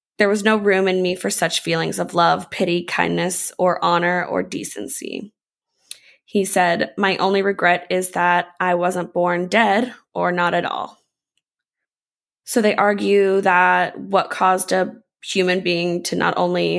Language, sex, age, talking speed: English, female, 20-39, 155 wpm